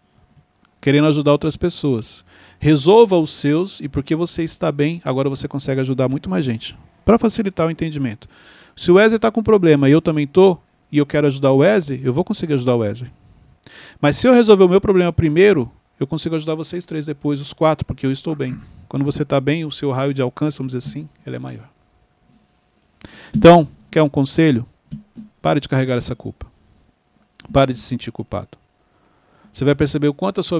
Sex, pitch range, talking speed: male, 130-170 Hz, 200 wpm